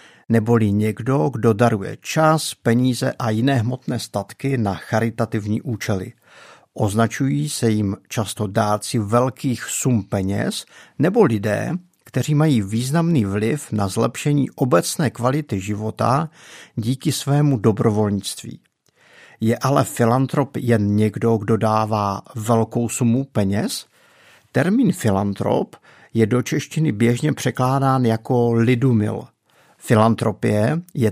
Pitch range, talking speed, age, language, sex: 110-145 Hz, 110 wpm, 50-69, Czech, male